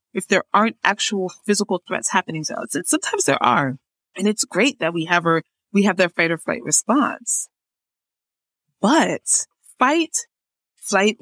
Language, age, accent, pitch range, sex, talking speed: English, 30-49, American, 165-235 Hz, female, 160 wpm